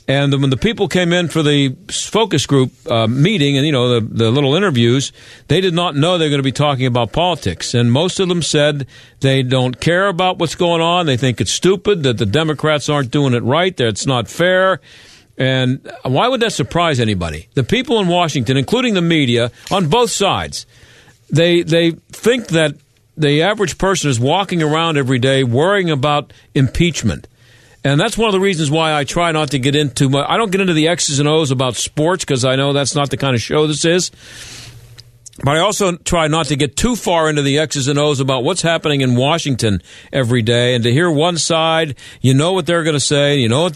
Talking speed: 220 wpm